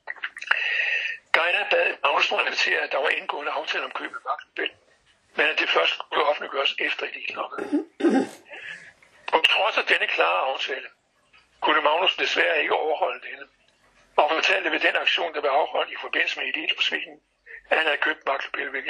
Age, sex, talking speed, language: 60-79, male, 170 wpm, Danish